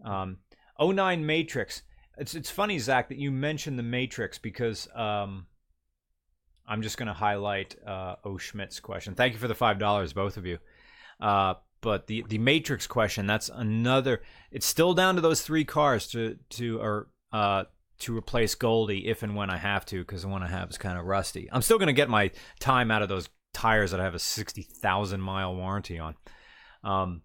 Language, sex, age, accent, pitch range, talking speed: English, male, 30-49, American, 95-125 Hz, 195 wpm